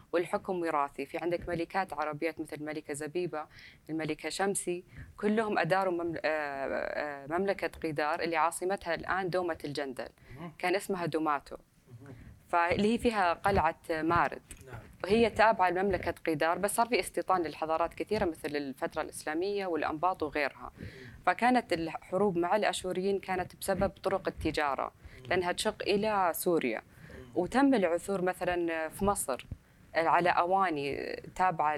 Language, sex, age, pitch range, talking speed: Arabic, female, 20-39, 155-195 Hz, 120 wpm